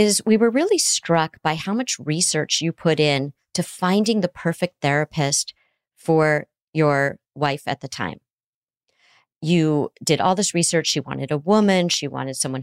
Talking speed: 165 wpm